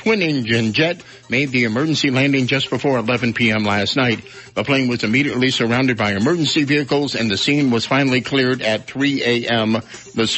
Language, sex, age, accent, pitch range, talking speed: English, male, 60-79, American, 120-150 Hz, 180 wpm